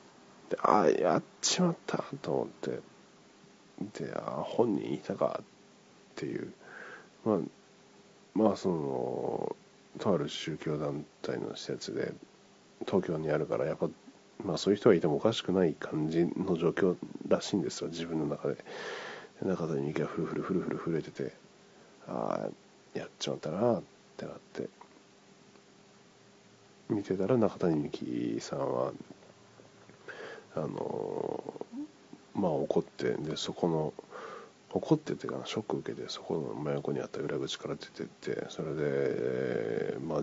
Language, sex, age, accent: Japanese, male, 40-59, native